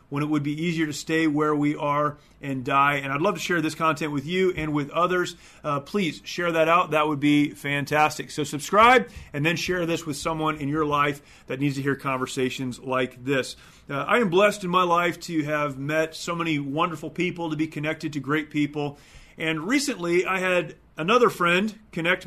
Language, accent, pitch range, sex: English, American, 145-170 Hz, male